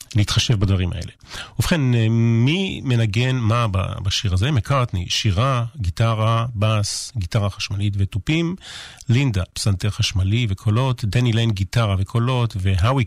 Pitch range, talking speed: 100-125 Hz, 115 wpm